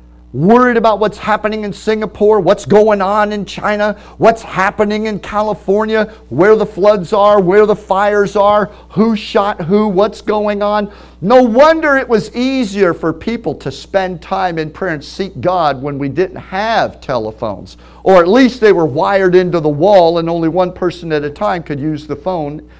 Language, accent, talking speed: English, American, 180 wpm